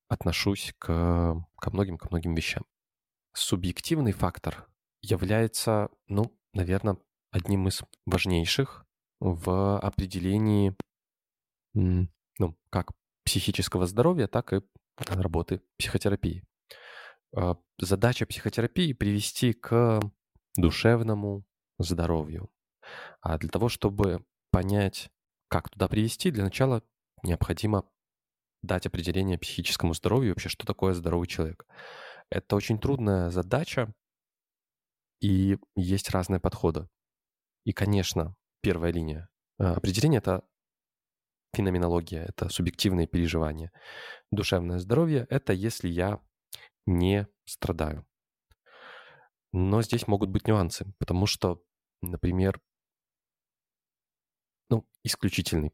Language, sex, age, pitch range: Russian, male, 20-39, 90-110 Hz